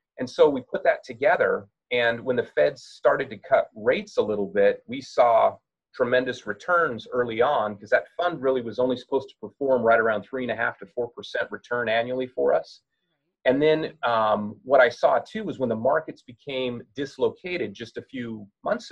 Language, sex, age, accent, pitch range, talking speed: English, male, 30-49, American, 115-140 Hz, 185 wpm